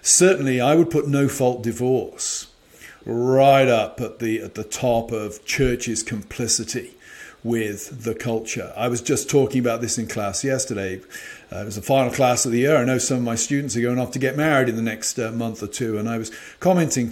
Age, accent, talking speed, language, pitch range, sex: 40-59, British, 210 wpm, English, 115-130 Hz, male